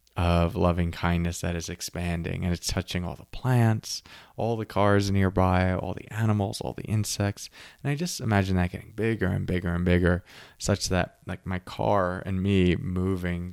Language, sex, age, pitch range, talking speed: English, male, 20-39, 90-110 Hz, 180 wpm